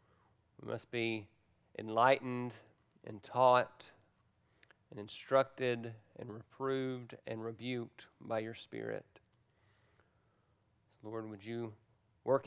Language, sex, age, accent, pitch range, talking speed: English, male, 40-59, American, 115-150 Hz, 90 wpm